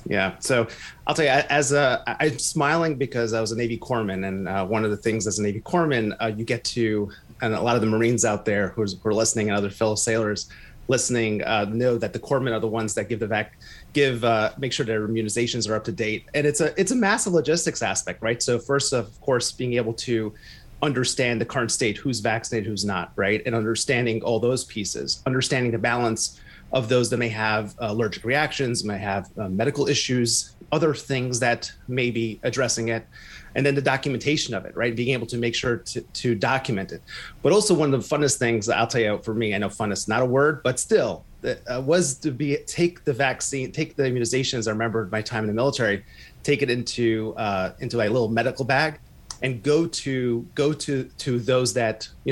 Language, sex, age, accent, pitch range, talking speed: English, male, 30-49, American, 110-135 Hz, 220 wpm